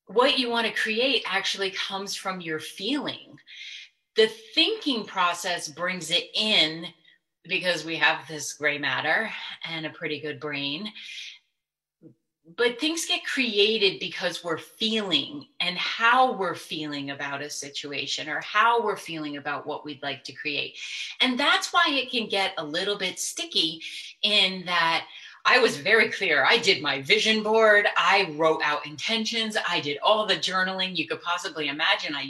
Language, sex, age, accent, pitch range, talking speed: English, female, 30-49, American, 155-220 Hz, 160 wpm